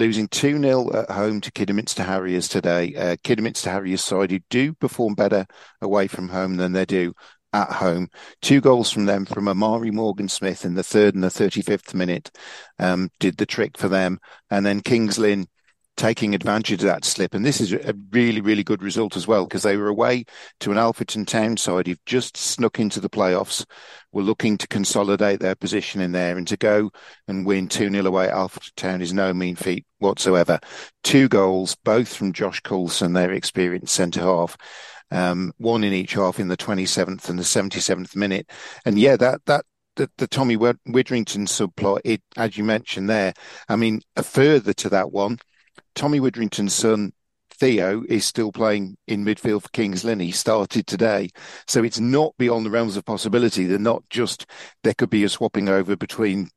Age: 50-69